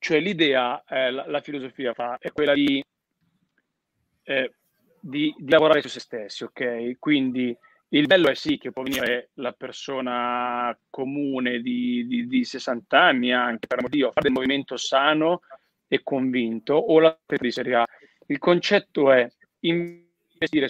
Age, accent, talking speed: 30-49, native, 155 wpm